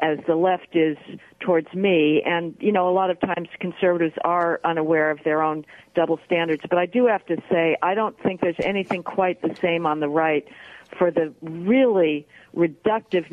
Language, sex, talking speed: English, female, 190 wpm